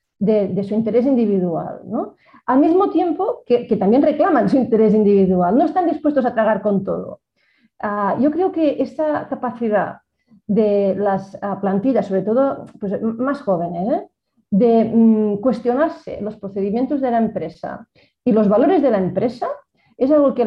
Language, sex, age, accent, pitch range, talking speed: Spanish, female, 40-59, Spanish, 200-265 Hz, 165 wpm